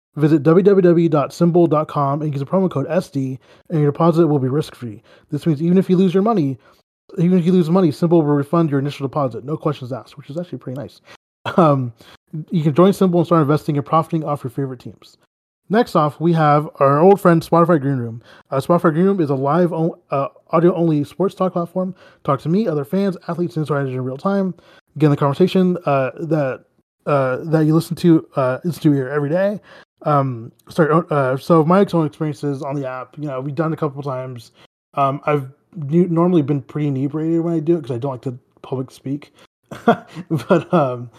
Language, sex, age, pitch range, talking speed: English, male, 20-39, 135-170 Hz, 210 wpm